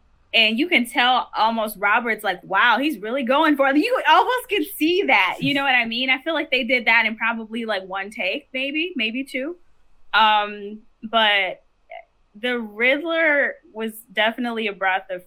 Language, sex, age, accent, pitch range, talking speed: English, female, 10-29, American, 185-275 Hz, 180 wpm